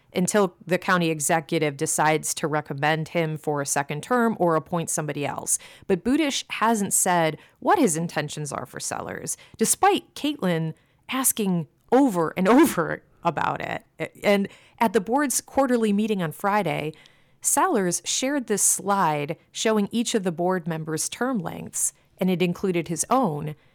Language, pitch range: English, 160-215 Hz